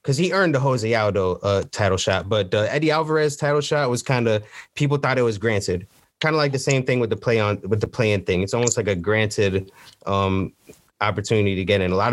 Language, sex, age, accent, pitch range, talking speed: English, male, 20-39, American, 105-150 Hz, 245 wpm